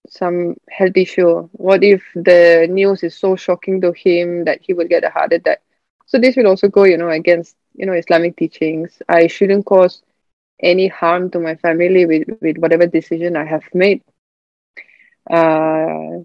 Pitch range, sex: 170-195 Hz, female